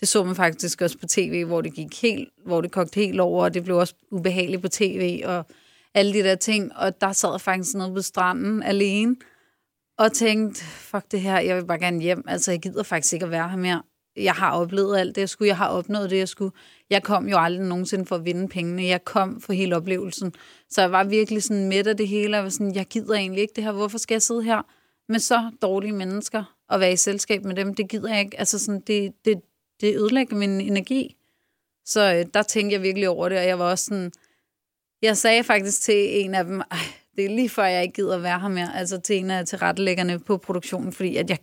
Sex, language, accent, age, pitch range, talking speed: female, Danish, native, 30-49, 185-215 Hz, 245 wpm